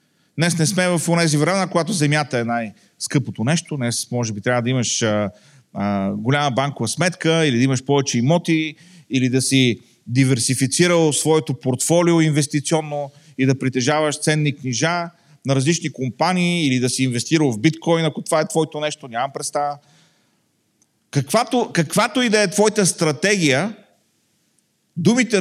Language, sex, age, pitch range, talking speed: Bulgarian, male, 40-59, 135-185 Hz, 150 wpm